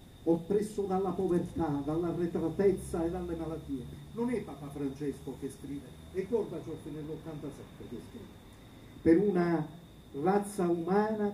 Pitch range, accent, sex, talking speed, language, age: 155-195 Hz, native, male, 125 wpm, Italian, 50-69